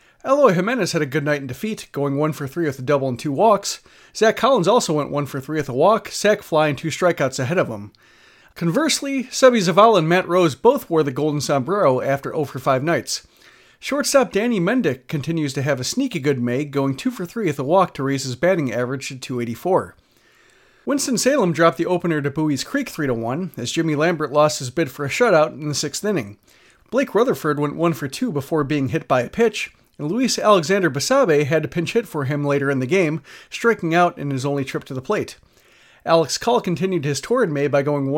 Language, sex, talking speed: English, male, 225 wpm